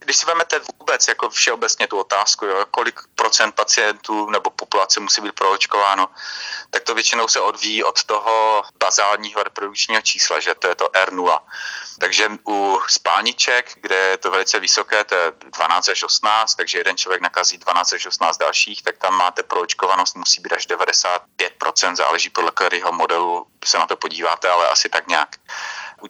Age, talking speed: 30-49, 170 wpm